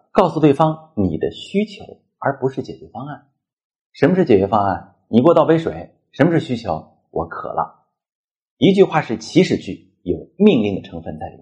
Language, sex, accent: Chinese, male, native